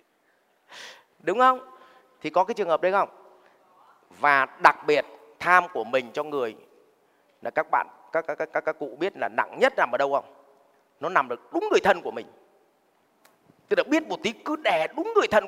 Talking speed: 200 wpm